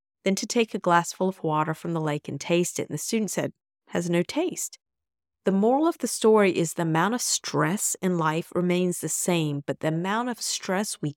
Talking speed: 225 wpm